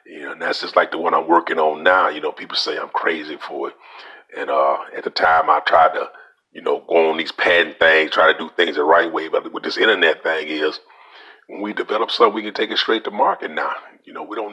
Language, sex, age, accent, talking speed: English, male, 40-59, American, 265 wpm